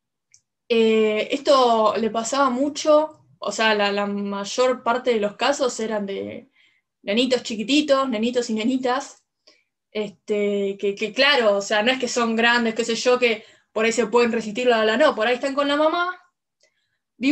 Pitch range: 220-280 Hz